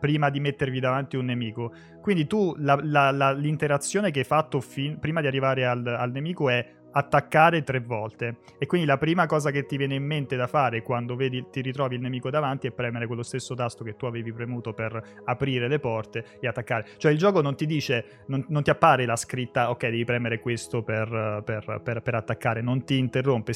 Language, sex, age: Italian, male, 20-39